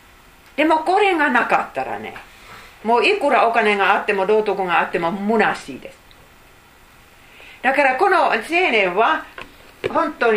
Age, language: 40-59, Japanese